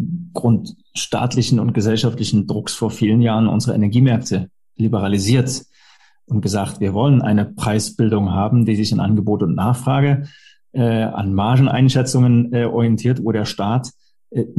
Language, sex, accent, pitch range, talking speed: German, male, German, 110-125 Hz, 130 wpm